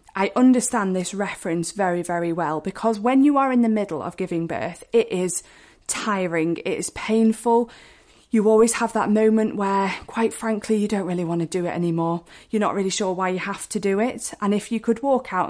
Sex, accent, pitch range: female, British, 180-225 Hz